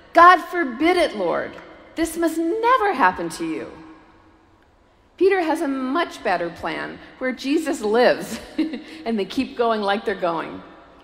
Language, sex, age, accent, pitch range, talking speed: English, female, 50-69, American, 170-235 Hz, 140 wpm